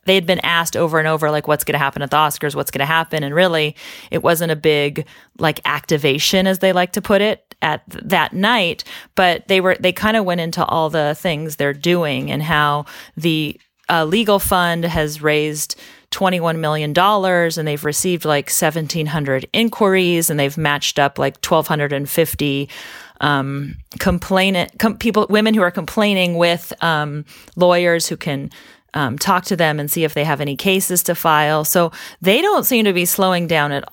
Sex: female